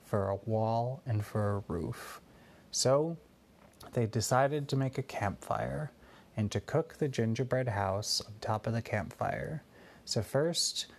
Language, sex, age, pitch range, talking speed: English, male, 30-49, 105-130 Hz, 145 wpm